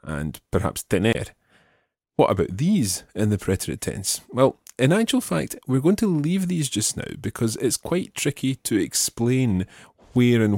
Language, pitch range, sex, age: English, 90-125 Hz, male, 30-49